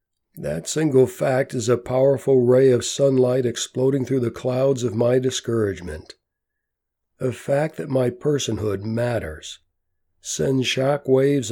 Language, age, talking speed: English, 60-79, 125 wpm